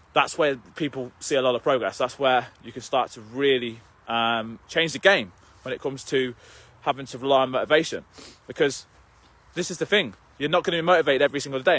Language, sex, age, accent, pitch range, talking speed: English, male, 20-39, British, 120-155 Hz, 210 wpm